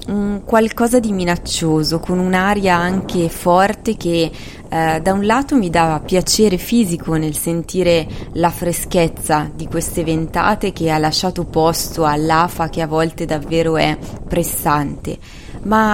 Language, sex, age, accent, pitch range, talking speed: Italian, female, 20-39, native, 160-205 Hz, 135 wpm